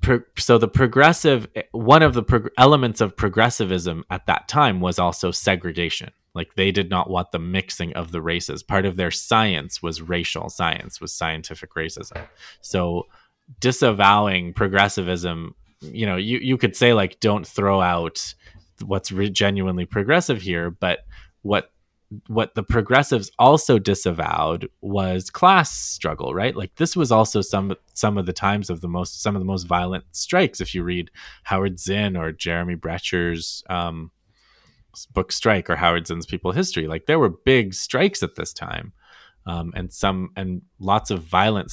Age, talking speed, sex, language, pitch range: 20-39, 160 wpm, male, English, 85-110 Hz